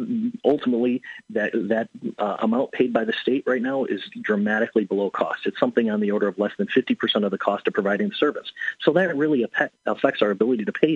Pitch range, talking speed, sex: 110-180 Hz, 215 wpm, male